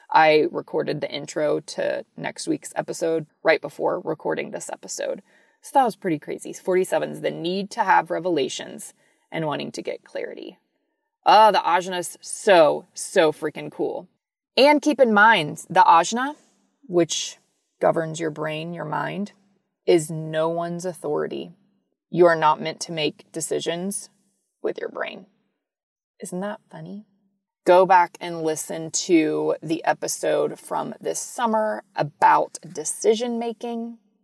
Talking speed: 140 wpm